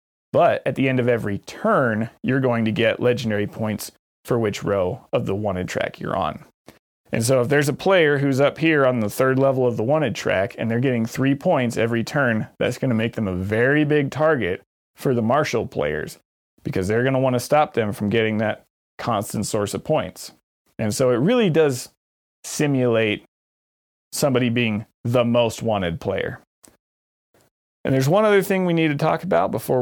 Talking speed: 195 wpm